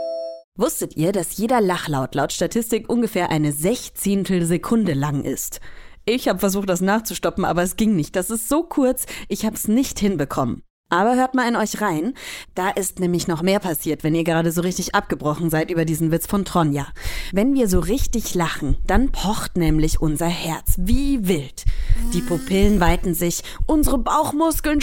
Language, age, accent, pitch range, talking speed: German, 20-39, German, 165-225 Hz, 175 wpm